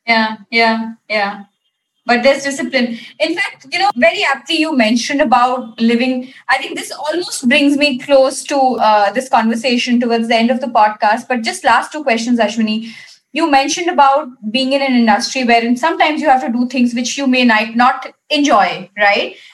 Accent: Indian